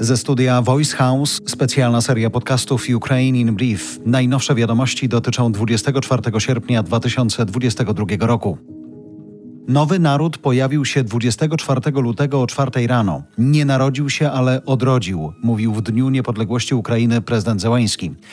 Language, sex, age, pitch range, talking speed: Polish, male, 40-59, 115-140 Hz, 125 wpm